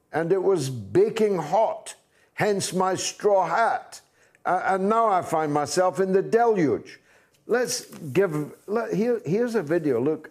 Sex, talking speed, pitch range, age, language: male, 140 wpm, 95-155 Hz, 60-79, English